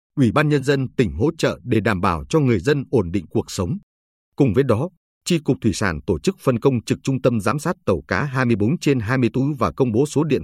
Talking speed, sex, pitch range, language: 255 wpm, male, 105-145 Hz, Vietnamese